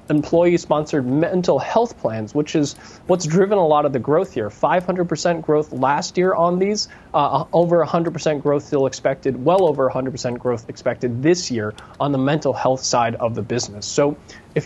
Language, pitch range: English, 130-170 Hz